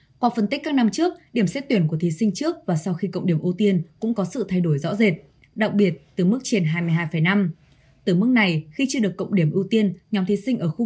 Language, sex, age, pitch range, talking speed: Vietnamese, female, 20-39, 175-225 Hz, 265 wpm